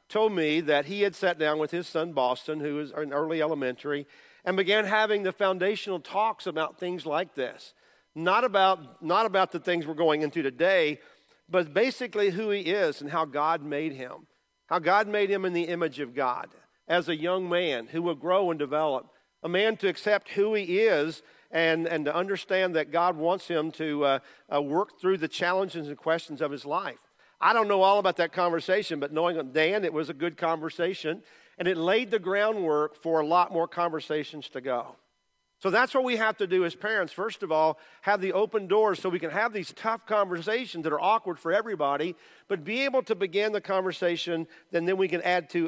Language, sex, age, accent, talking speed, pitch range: English, male, 50-69, American, 210 wpm, 160-200 Hz